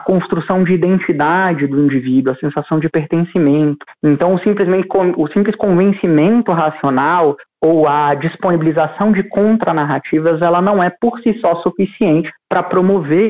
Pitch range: 145-185 Hz